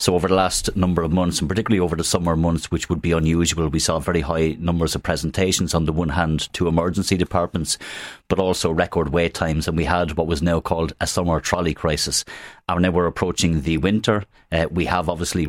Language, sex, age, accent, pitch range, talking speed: English, male, 30-49, Irish, 80-90 Hz, 220 wpm